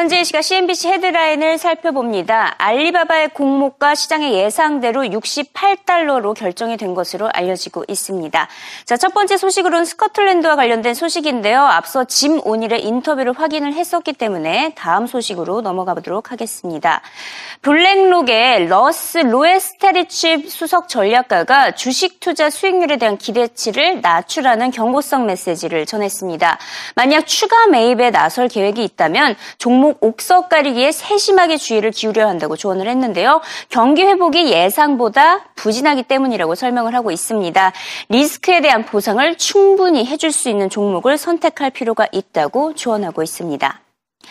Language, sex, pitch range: Korean, female, 220-340 Hz